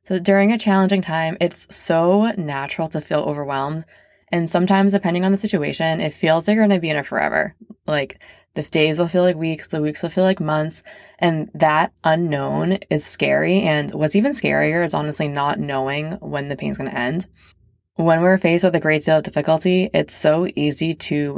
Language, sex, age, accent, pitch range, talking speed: English, female, 20-39, American, 150-190 Hz, 200 wpm